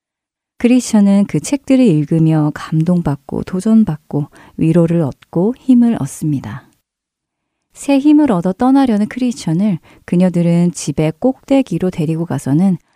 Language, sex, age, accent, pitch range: Korean, female, 40-59, native, 150-215 Hz